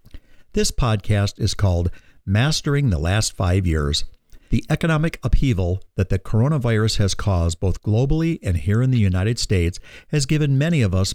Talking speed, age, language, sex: 160 wpm, 60-79, English, male